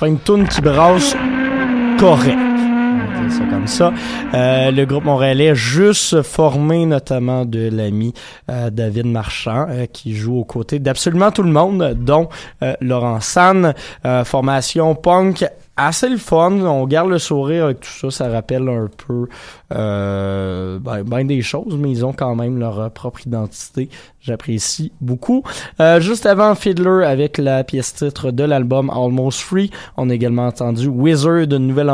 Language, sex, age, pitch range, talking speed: French, male, 20-39, 120-160 Hz, 165 wpm